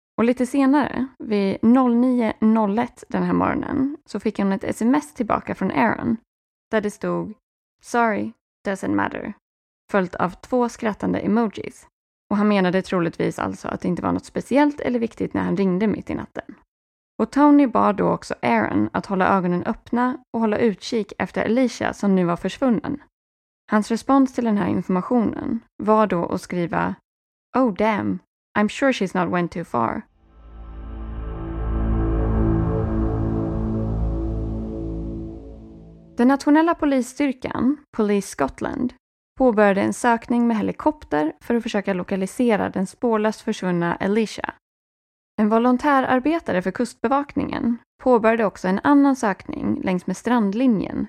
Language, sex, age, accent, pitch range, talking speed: Swedish, female, 20-39, native, 180-255 Hz, 135 wpm